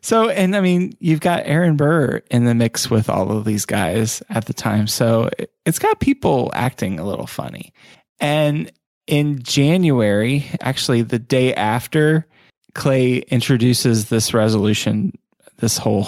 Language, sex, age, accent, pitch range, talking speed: English, male, 20-39, American, 115-140 Hz, 150 wpm